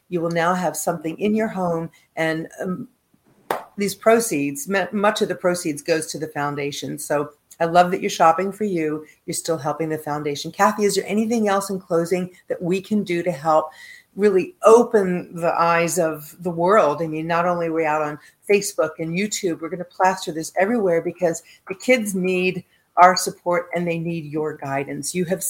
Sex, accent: female, American